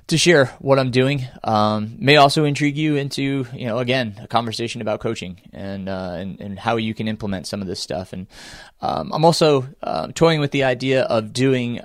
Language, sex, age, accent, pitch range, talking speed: English, male, 20-39, American, 105-130 Hz, 210 wpm